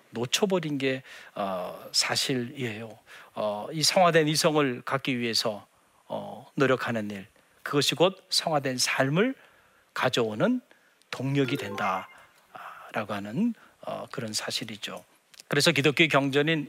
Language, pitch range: Korean, 130-210 Hz